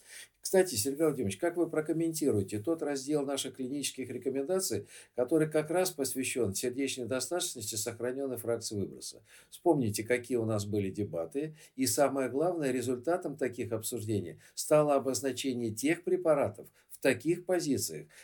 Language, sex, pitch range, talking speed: Russian, male, 110-145 Hz, 130 wpm